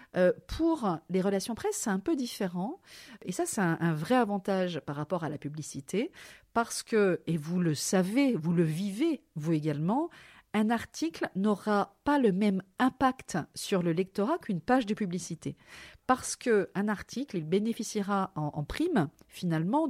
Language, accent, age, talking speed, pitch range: French, French, 40-59, 165 wpm, 170-240 Hz